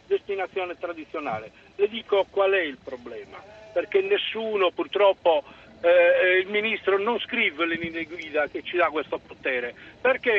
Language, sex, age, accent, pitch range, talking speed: Italian, male, 50-69, native, 185-225 Hz, 145 wpm